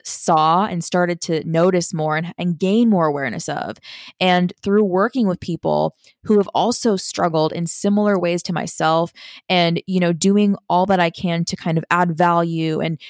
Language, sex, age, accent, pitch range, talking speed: English, female, 20-39, American, 165-200 Hz, 185 wpm